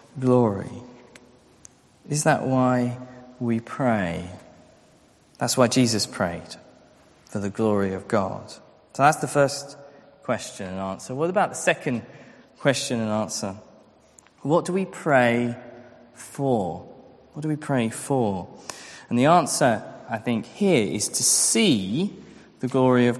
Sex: male